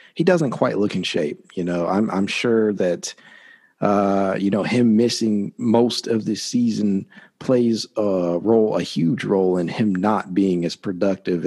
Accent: American